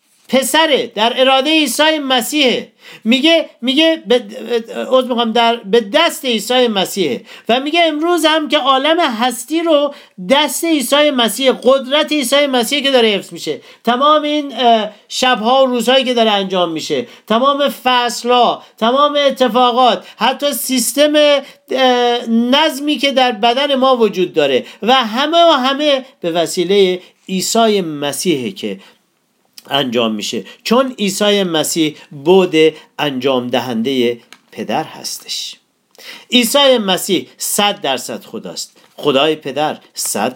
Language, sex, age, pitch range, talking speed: Persian, male, 40-59, 190-280 Hz, 120 wpm